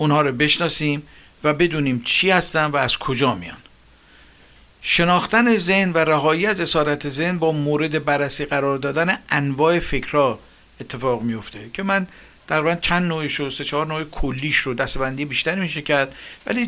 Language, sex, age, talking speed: Persian, male, 50-69, 160 wpm